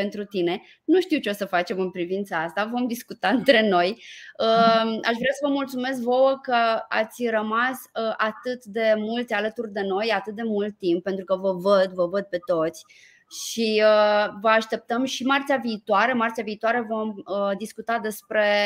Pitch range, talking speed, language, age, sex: 195-235 Hz, 170 wpm, Romanian, 20-39, female